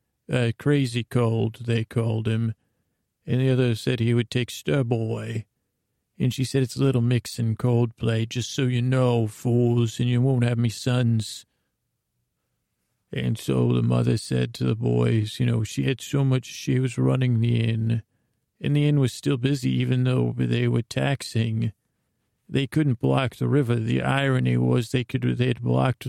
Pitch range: 110-125 Hz